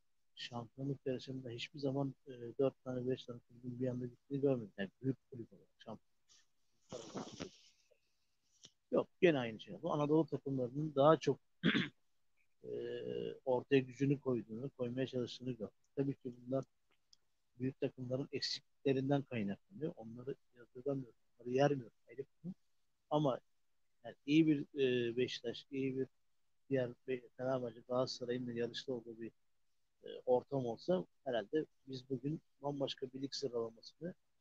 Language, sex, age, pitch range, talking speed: Turkish, male, 60-79, 120-140 Hz, 120 wpm